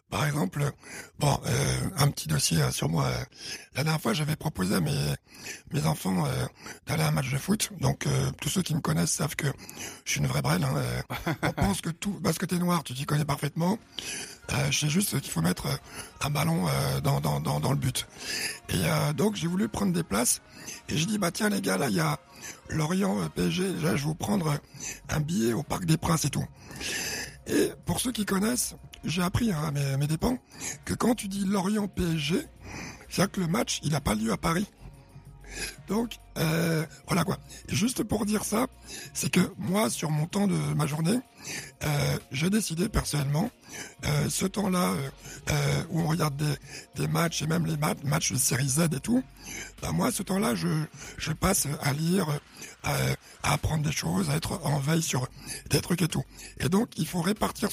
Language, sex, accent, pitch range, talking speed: French, male, French, 145-185 Hz, 205 wpm